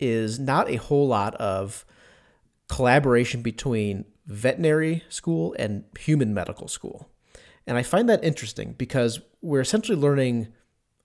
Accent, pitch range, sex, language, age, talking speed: American, 105-135 Hz, male, English, 30-49, 125 wpm